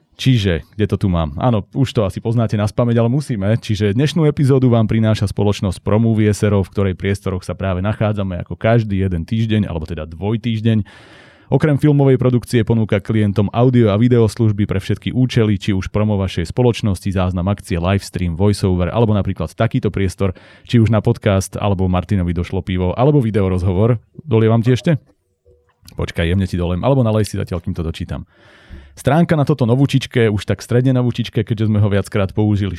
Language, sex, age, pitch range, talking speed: Slovak, male, 30-49, 95-120 Hz, 175 wpm